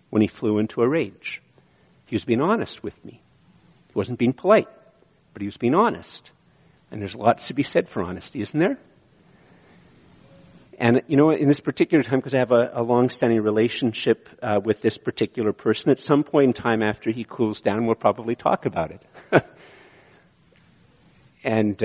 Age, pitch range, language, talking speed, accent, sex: 50-69, 105-130 Hz, English, 180 wpm, American, male